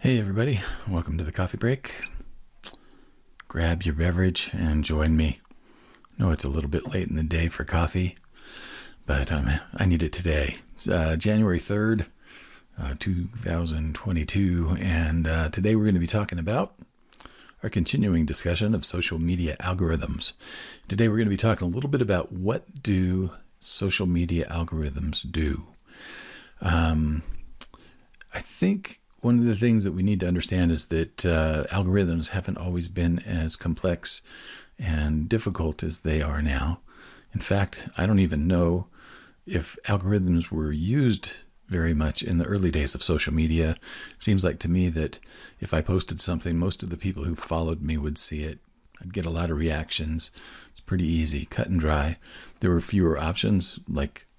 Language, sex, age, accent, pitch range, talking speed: English, male, 40-59, American, 80-95 Hz, 170 wpm